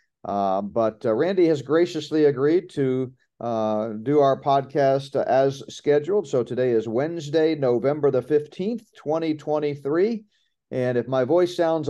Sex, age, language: male, 40-59, English